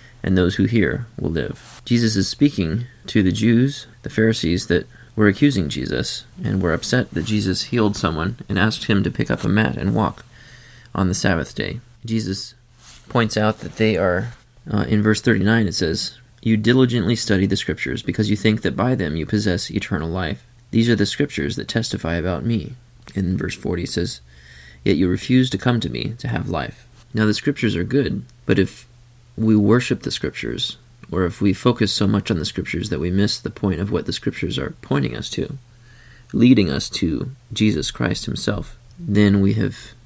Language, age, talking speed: English, 30-49, 195 wpm